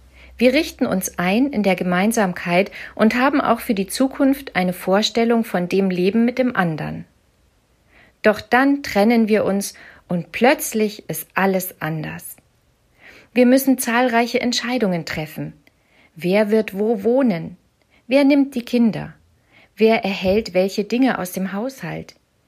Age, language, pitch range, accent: 50-69, German, 180-240 Hz, German